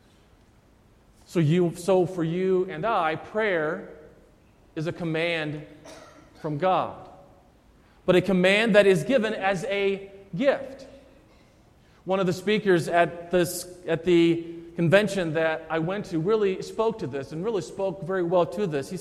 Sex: male